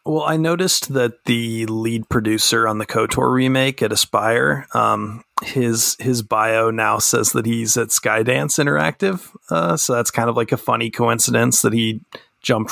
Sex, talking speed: male, 170 wpm